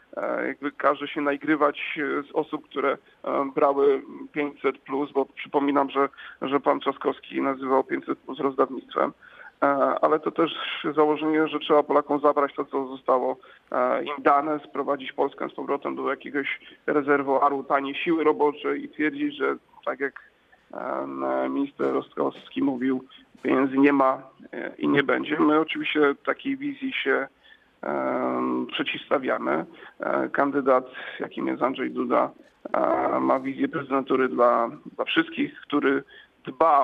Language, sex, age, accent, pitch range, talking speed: Polish, male, 40-59, native, 135-155 Hz, 125 wpm